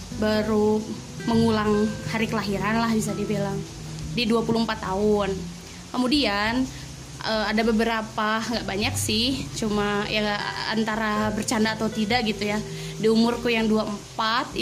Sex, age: female, 20-39